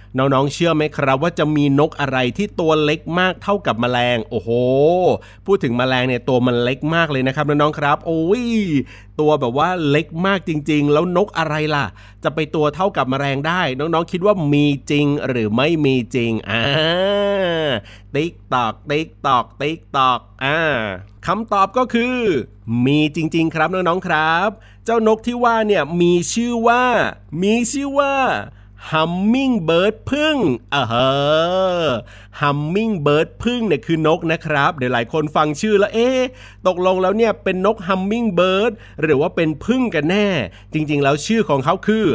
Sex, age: male, 30-49